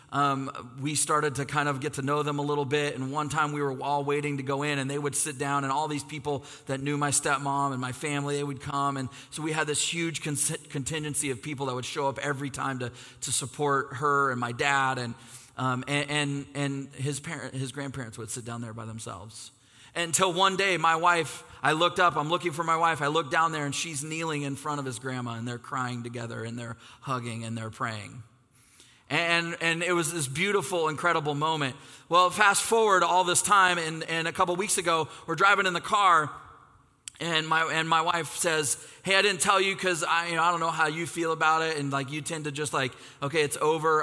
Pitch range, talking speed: 130-160 Hz, 235 wpm